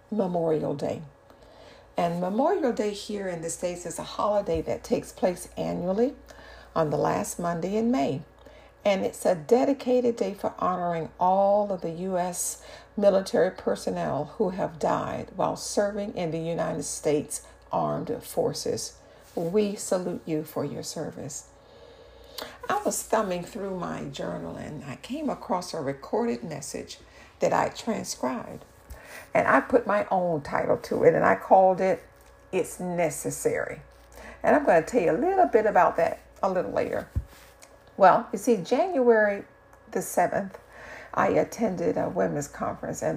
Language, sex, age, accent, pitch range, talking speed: English, female, 60-79, American, 175-240 Hz, 150 wpm